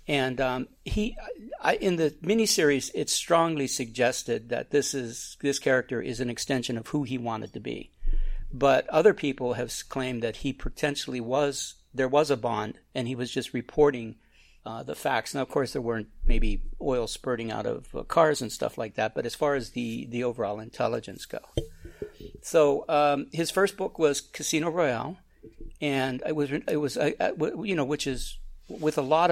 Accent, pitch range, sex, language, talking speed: American, 120-150 Hz, male, English, 185 wpm